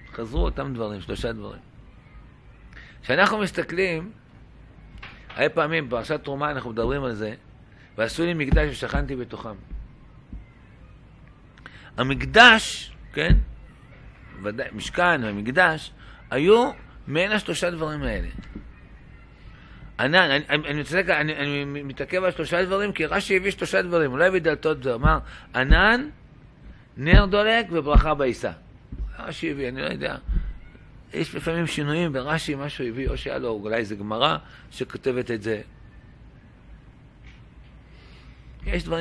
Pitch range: 120-175 Hz